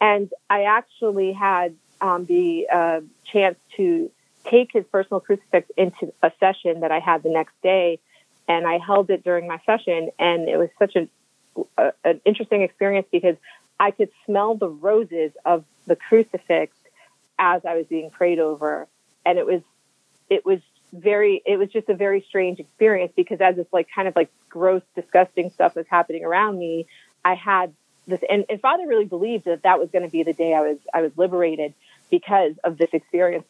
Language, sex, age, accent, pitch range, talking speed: English, female, 30-49, American, 170-205 Hz, 185 wpm